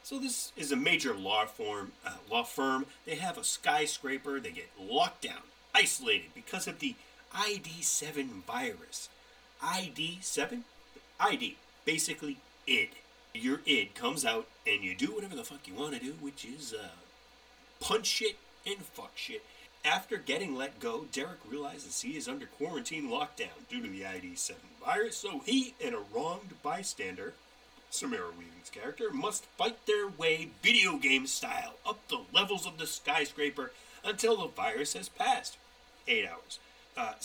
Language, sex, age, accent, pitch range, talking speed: English, male, 30-49, American, 185-245 Hz, 155 wpm